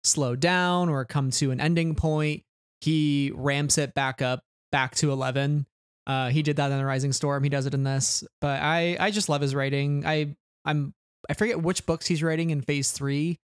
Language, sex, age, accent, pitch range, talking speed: English, male, 20-39, American, 135-160 Hz, 210 wpm